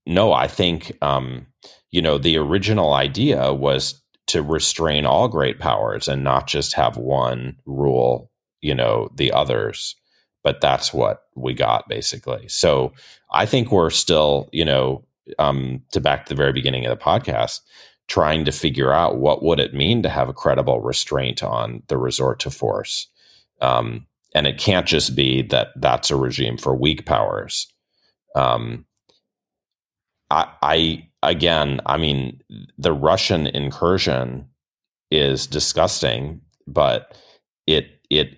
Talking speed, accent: 145 wpm, American